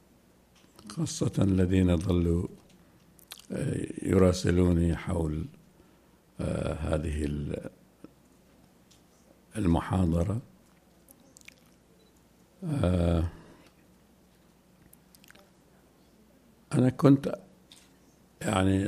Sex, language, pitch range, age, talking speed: male, Arabic, 85-100 Hz, 60-79, 30 wpm